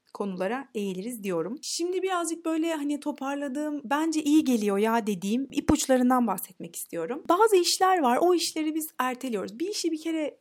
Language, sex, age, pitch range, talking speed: Turkish, female, 30-49, 210-290 Hz, 155 wpm